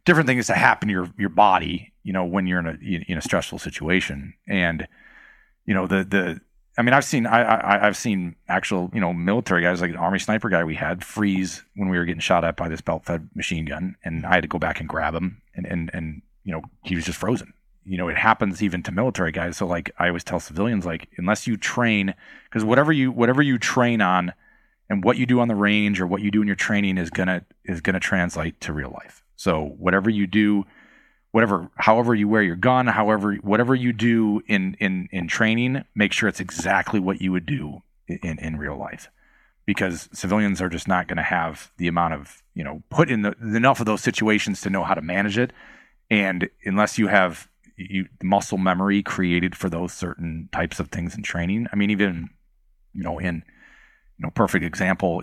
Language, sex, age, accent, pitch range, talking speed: English, male, 30-49, American, 90-105 Hz, 225 wpm